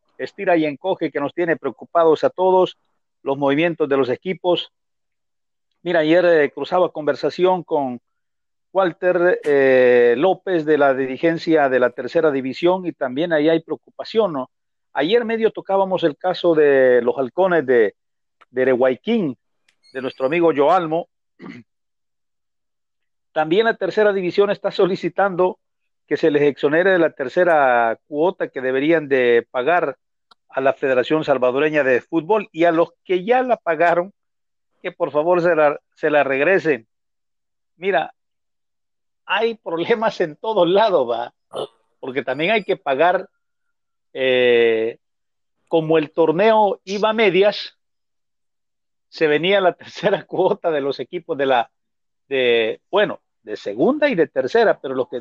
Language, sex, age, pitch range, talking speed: Spanish, male, 50-69, 145-190 Hz, 140 wpm